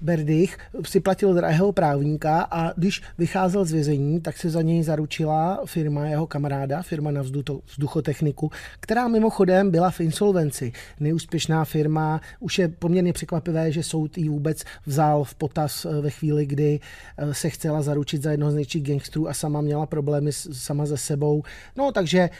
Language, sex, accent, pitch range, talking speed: Czech, male, native, 145-165 Hz, 160 wpm